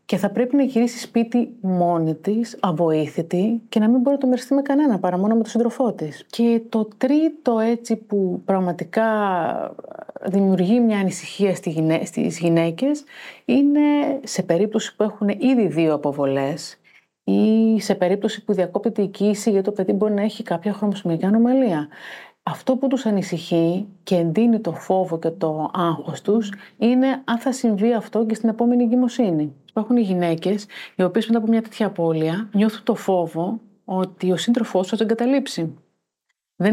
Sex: female